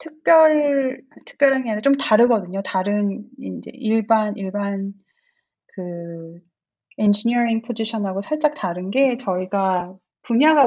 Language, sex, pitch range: Korean, female, 190-260 Hz